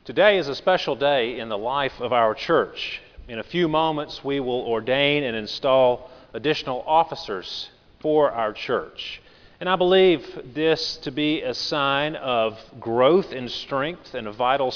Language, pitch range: English, 120-155 Hz